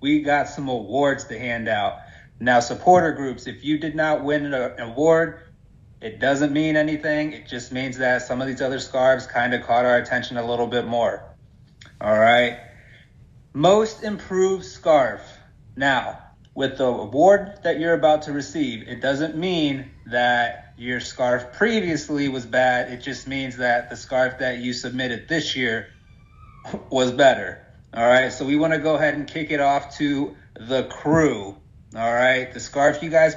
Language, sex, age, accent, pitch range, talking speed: English, male, 30-49, American, 120-150 Hz, 175 wpm